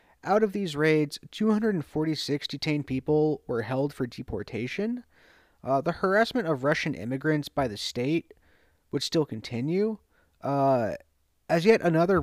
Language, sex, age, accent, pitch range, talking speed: English, male, 30-49, American, 125-170 Hz, 135 wpm